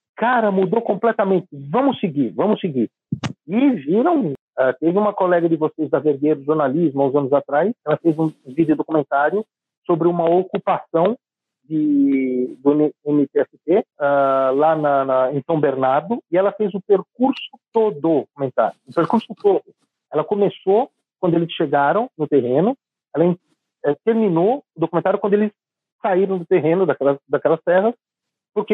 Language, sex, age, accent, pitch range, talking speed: Portuguese, male, 50-69, Brazilian, 150-210 Hz, 150 wpm